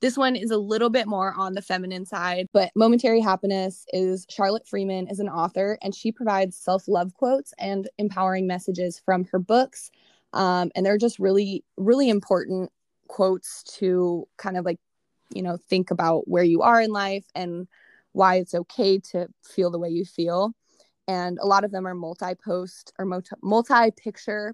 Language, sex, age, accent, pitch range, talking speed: English, female, 20-39, American, 180-205 Hz, 175 wpm